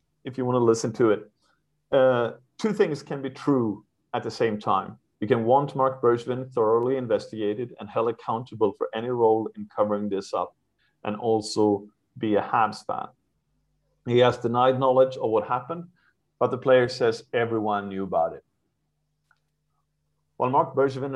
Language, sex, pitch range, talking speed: English, male, 110-130 Hz, 165 wpm